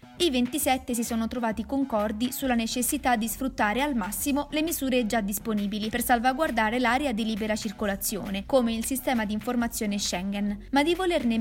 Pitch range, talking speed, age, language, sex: 215-280 Hz, 165 wpm, 20-39, Italian, female